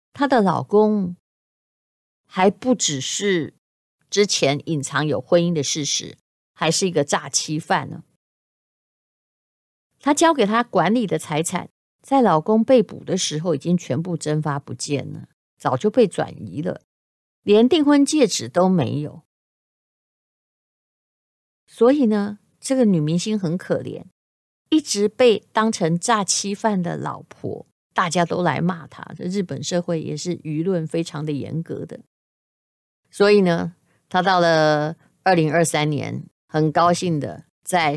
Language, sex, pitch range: Chinese, female, 150-185 Hz